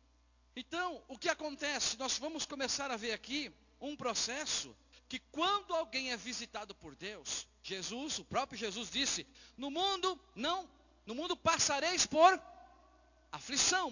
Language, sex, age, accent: Portuguese, male, 50-69, Brazilian